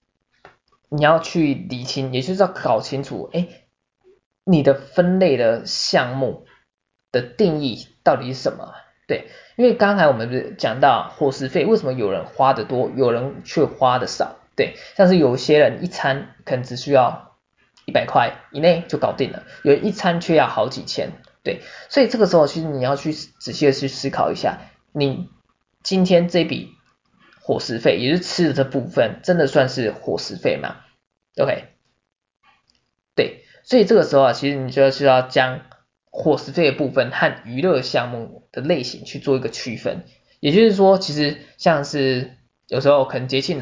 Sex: male